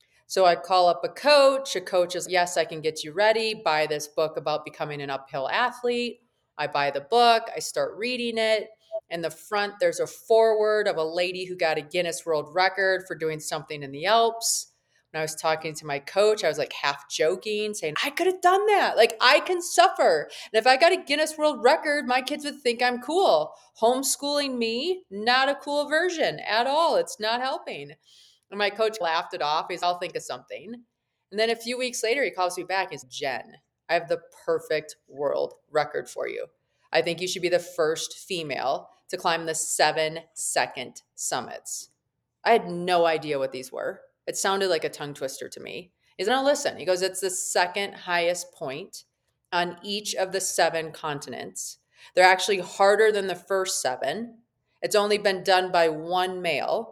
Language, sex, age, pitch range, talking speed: English, female, 30-49, 165-245 Hz, 205 wpm